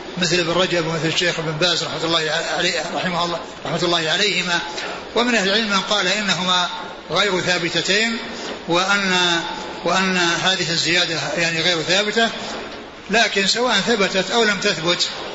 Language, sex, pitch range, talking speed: Arabic, male, 175-195 Hz, 130 wpm